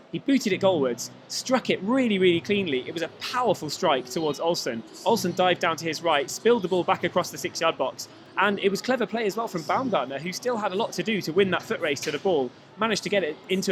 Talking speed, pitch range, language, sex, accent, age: 260 wpm, 175-210 Hz, English, male, British, 20-39